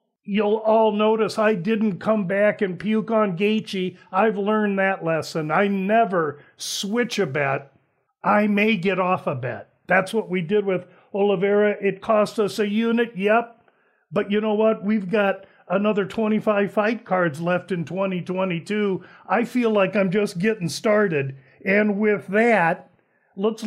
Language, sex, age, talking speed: English, male, 50-69, 155 wpm